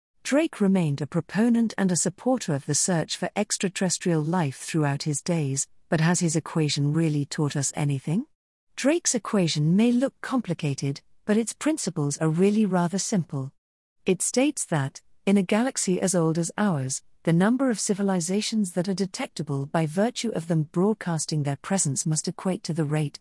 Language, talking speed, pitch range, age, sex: English, 170 wpm, 155-215 Hz, 40-59, female